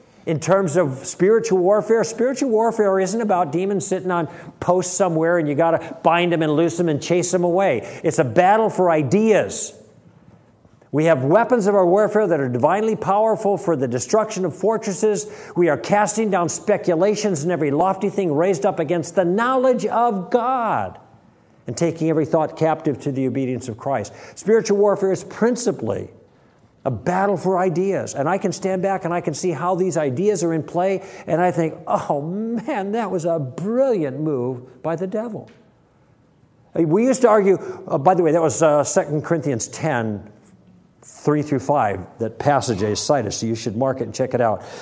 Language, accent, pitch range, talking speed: English, American, 150-200 Hz, 190 wpm